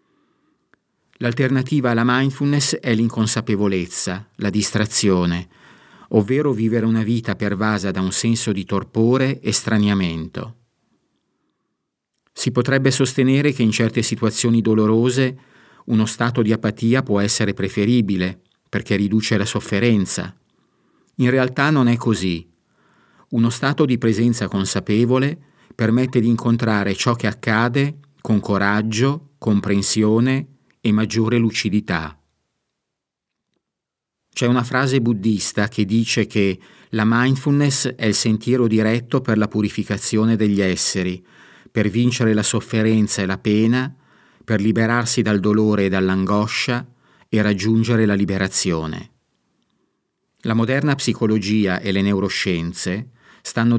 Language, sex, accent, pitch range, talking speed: Italian, male, native, 105-125 Hz, 115 wpm